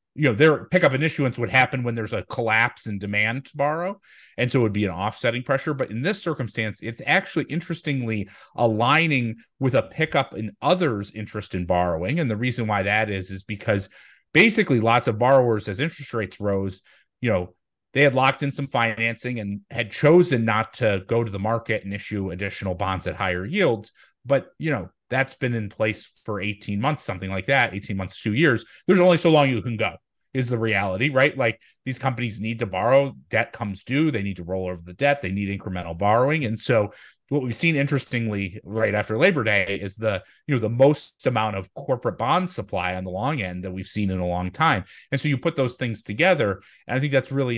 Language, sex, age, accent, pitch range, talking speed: English, male, 30-49, American, 100-135 Hz, 215 wpm